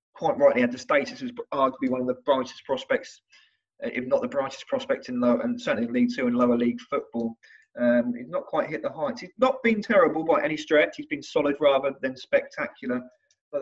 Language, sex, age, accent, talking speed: English, male, 20-39, British, 210 wpm